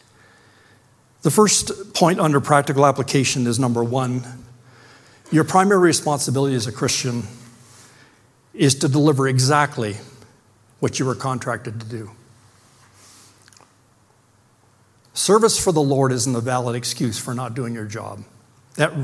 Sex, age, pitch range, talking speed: male, 60-79, 120-140 Hz, 125 wpm